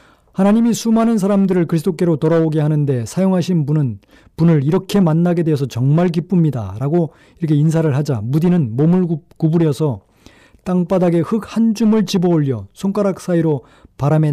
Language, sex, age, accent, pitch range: Korean, male, 40-59, native, 135-180 Hz